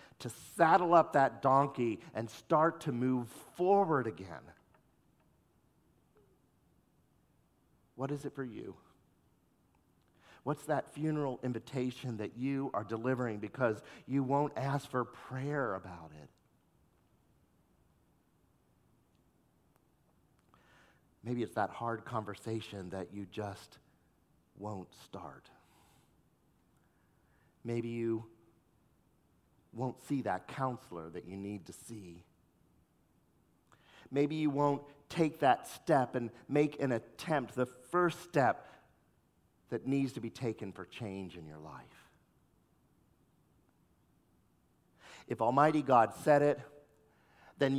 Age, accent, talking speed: 50-69, American, 105 wpm